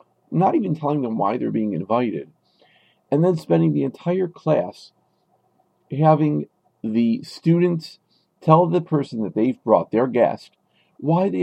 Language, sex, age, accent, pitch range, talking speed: English, male, 50-69, American, 135-170 Hz, 140 wpm